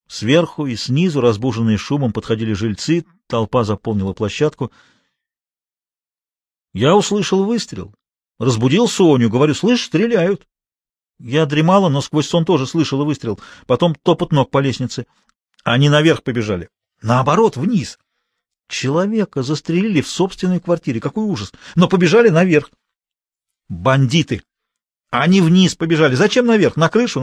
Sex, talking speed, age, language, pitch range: male, 120 wpm, 40-59, Russian, 115-160 Hz